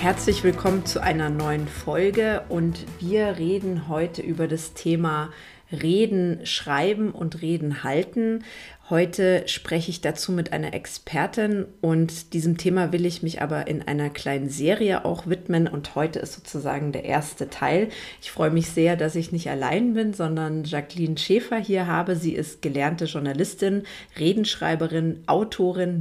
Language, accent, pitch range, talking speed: German, German, 155-180 Hz, 150 wpm